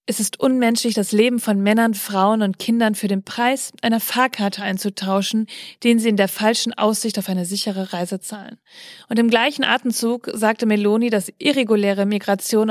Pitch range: 200-240 Hz